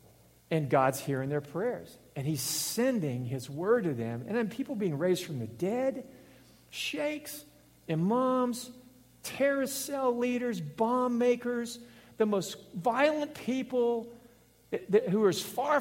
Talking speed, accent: 140 wpm, American